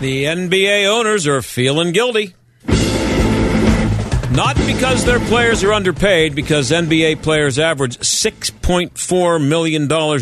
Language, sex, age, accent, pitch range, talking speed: English, male, 50-69, American, 125-165 Hz, 110 wpm